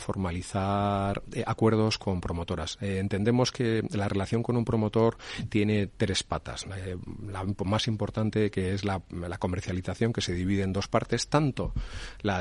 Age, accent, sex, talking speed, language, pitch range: 30-49, Spanish, male, 165 wpm, Spanish, 95-110 Hz